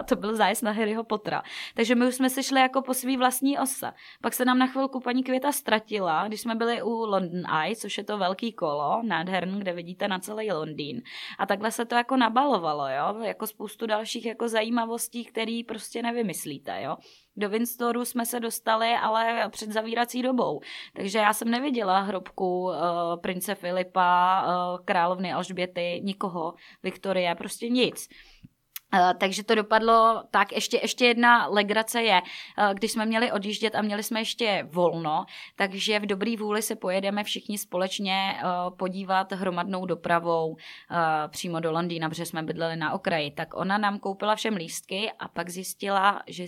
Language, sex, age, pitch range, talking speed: Czech, female, 20-39, 190-240 Hz, 165 wpm